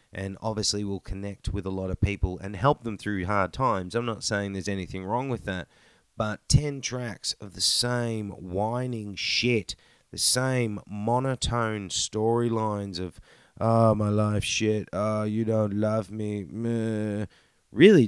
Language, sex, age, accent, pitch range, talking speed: English, male, 30-49, Australian, 100-125 Hz, 155 wpm